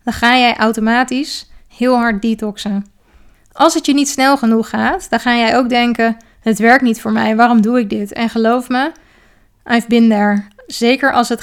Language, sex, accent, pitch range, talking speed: Dutch, female, Dutch, 225-255 Hz, 195 wpm